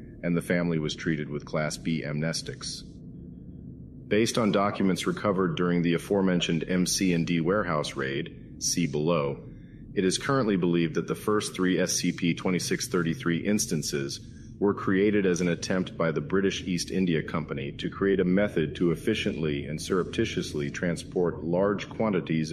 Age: 40-59